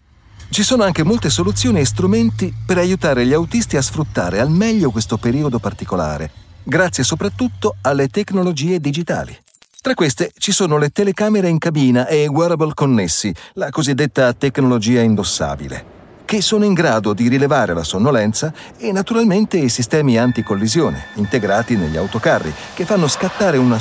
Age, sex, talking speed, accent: 40-59, male, 150 wpm, native